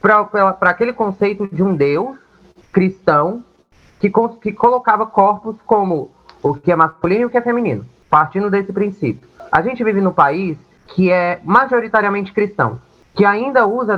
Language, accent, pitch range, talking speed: English, Brazilian, 160-210 Hz, 155 wpm